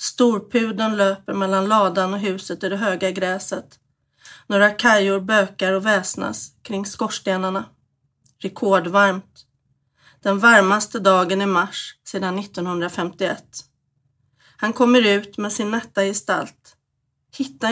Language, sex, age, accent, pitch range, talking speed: English, female, 40-59, Swedish, 180-215 Hz, 110 wpm